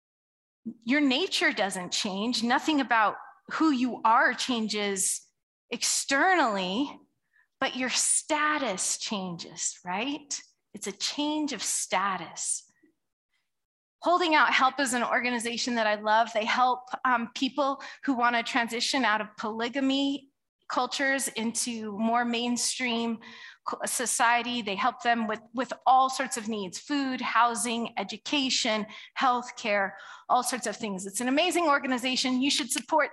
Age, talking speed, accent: 20-39, 130 wpm, American